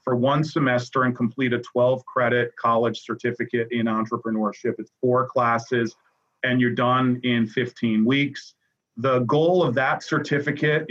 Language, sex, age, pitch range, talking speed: English, male, 40-59, 120-140 Hz, 145 wpm